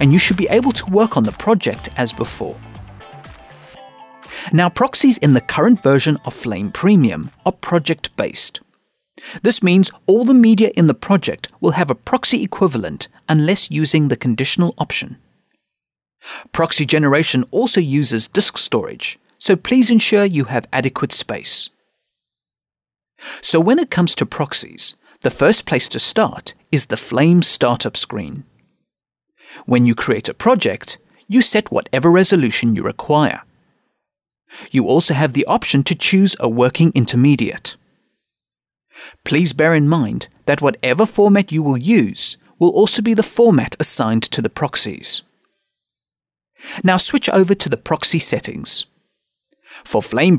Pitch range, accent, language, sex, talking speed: 135-200 Hz, British, English, male, 145 wpm